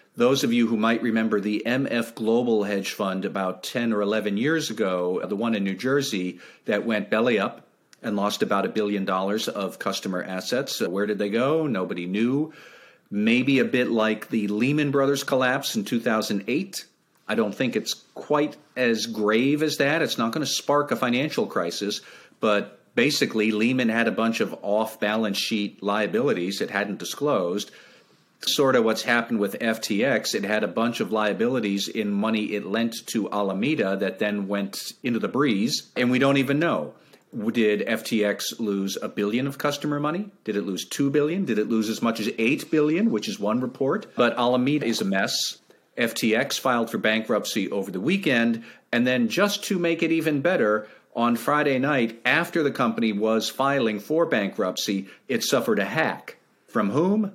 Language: English